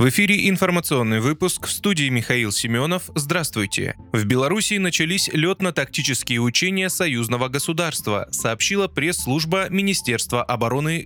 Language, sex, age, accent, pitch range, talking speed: Russian, male, 20-39, native, 120-180 Hz, 110 wpm